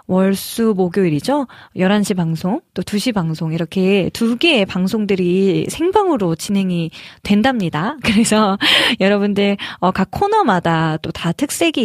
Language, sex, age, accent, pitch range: Korean, female, 20-39, native, 180-235 Hz